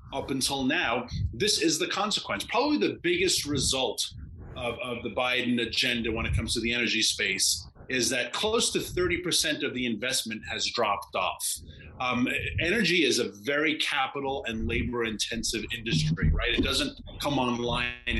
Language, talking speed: English, 160 wpm